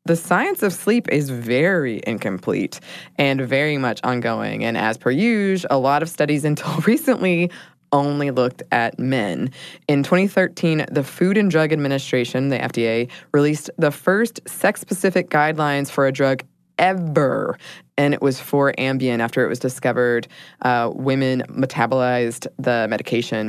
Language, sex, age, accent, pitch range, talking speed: English, female, 20-39, American, 125-175 Hz, 145 wpm